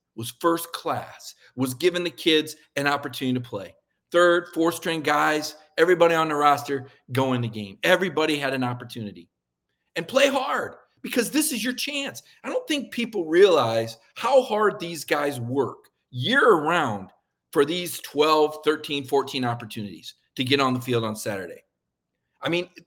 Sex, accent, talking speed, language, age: male, American, 155 wpm, English, 50-69